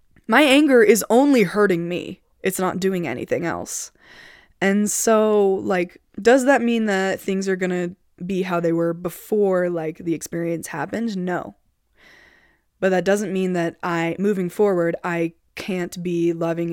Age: 20-39